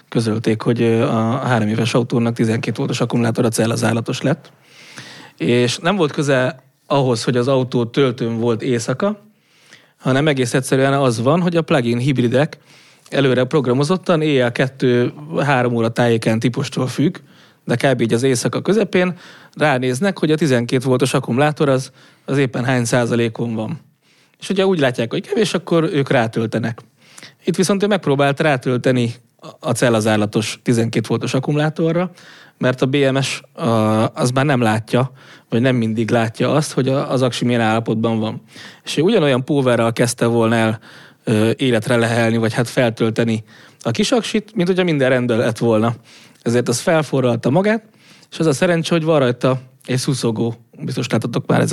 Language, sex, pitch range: English, male, 120-155 Hz